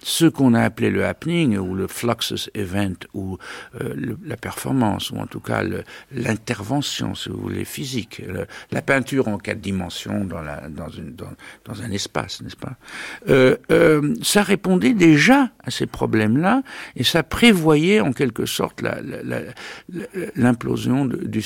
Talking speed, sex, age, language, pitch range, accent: 170 wpm, male, 60-79, French, 105-160 Hz, French